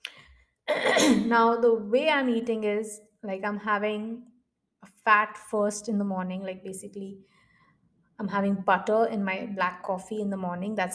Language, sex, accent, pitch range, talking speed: English, female, Indian, 195-230 Hz, 155 wpm